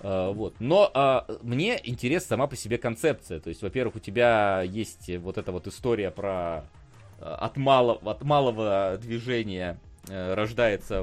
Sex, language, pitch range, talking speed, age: male, Russian, 90-120 Hz, 140 wpm, 30-49